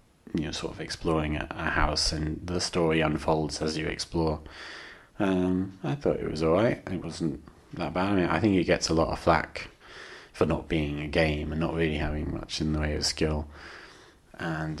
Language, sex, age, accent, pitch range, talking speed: English, male, 30-49, British, 75-85 Hz, 195 wpm